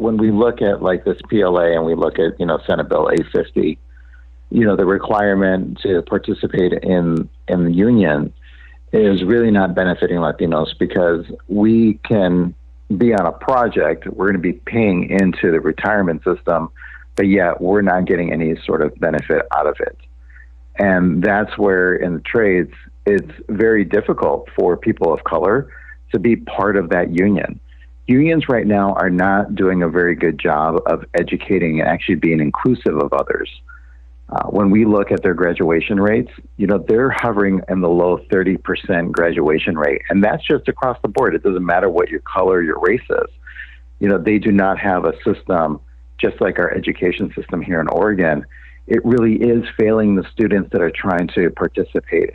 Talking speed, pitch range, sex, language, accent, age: 180 wpm, 75-105 Hz, male, English, American, 50-69